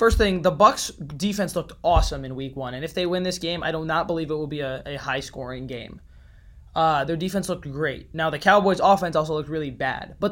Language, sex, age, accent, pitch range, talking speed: English, male, 20-39, American, 145-185 Hz, 240 wpm